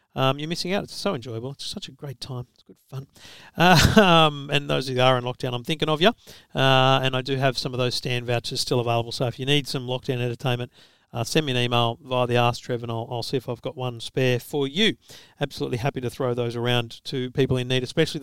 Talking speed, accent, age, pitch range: 255 wpm, Australian, 50-69, 120-145 Hz